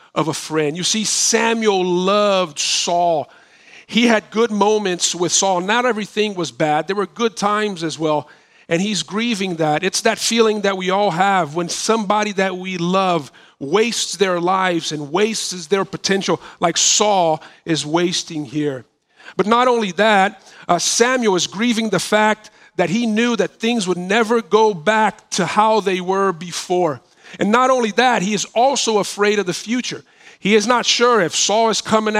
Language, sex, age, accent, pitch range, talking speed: English, male, 40-59, American, 180-225 Hz, 175 wpm